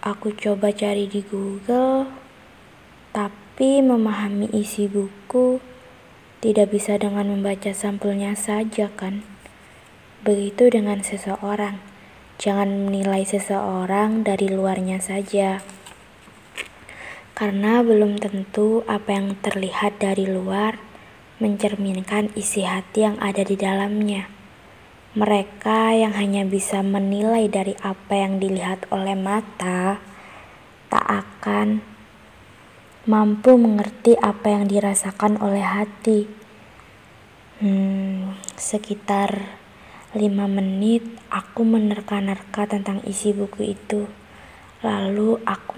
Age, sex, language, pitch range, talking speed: 20-39, female, Indonesian, 195-210 Hz, 95 wpm